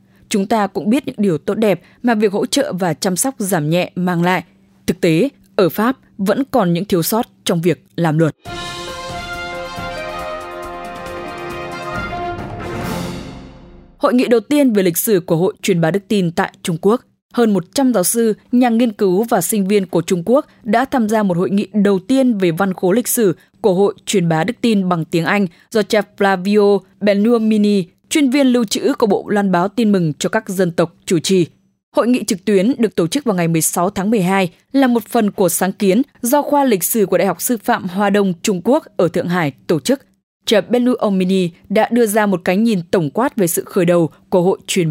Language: English